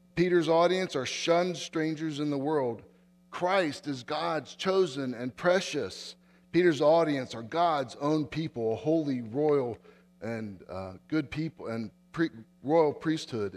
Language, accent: English, American